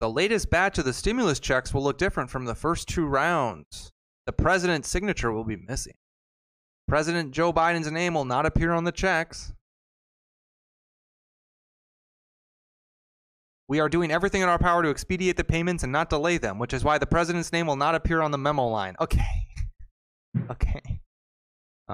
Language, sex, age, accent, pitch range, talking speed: English, male, 20-39, American, 115-165 Hz, 170 wpm